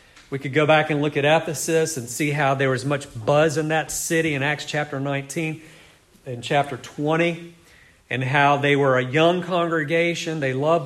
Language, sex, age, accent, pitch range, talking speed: English, male, 50-69, American, 135-170 Hz, 190 wpm